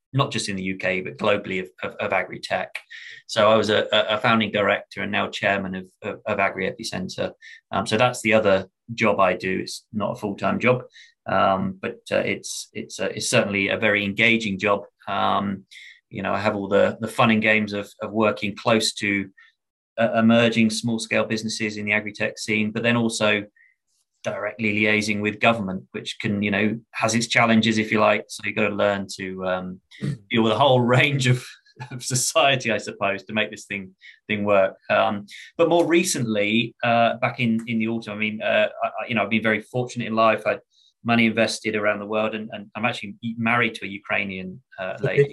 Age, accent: 20-39, British